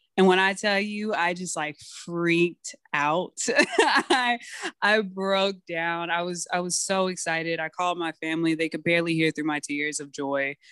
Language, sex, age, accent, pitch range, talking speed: English, female, 20-39, American, 160-200 Hz, 185 wpm